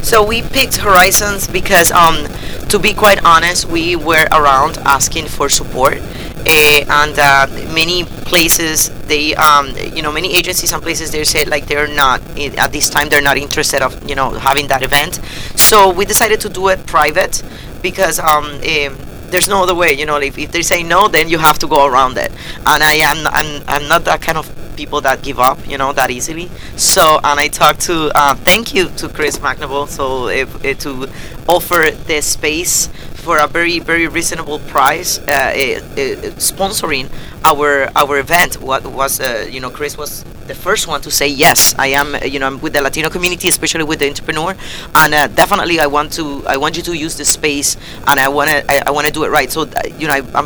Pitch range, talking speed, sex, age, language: 140-165 Hz, 210 wpm, female, 30-49, English